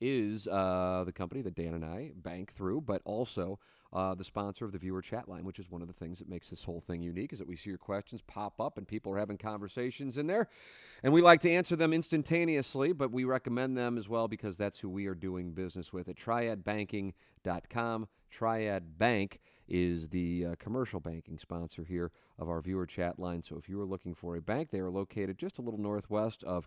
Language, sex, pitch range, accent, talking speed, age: English, male, 90-120 Hz, American, 225 wpm, 40-59